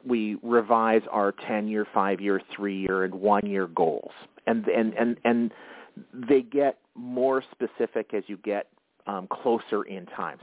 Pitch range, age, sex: 105-130 Hz, 40-59, male